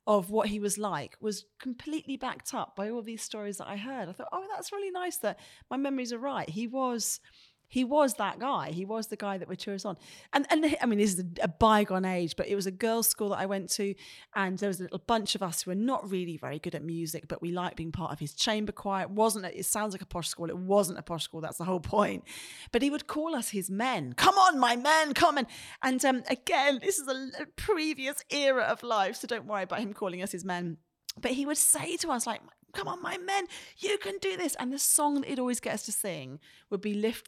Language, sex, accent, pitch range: English, female, British, 185-265 Hz